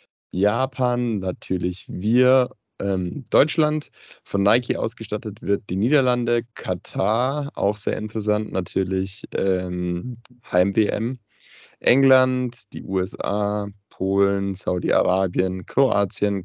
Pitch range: 95-120 Hz